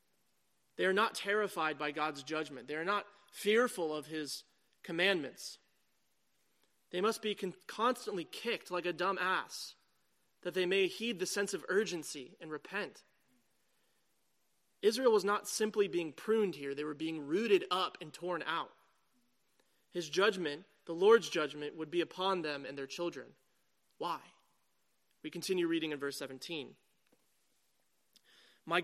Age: 30-49